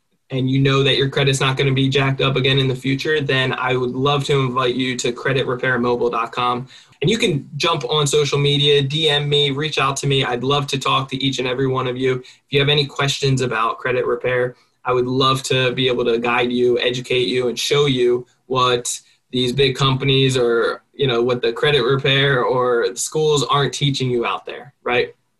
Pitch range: 125-145 Hz